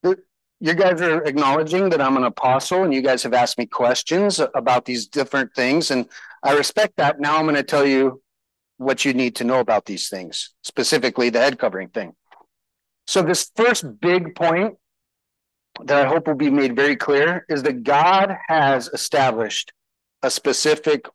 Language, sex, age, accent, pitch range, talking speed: English, male, 40-59, American, 130-175 Hz, 175 wpm